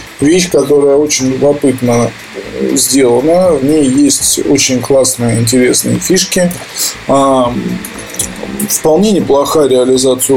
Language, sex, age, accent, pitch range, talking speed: Russian, male, 20-39, native, 130-160 Hz, 85 wpm